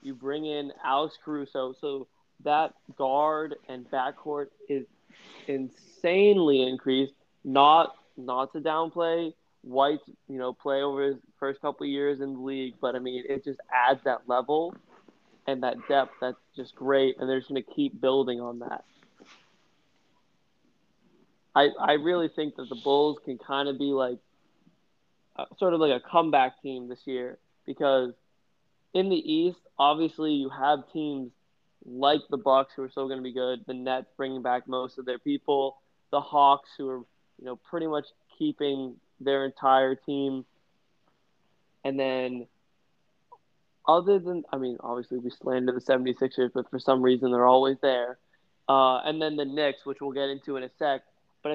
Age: 20-39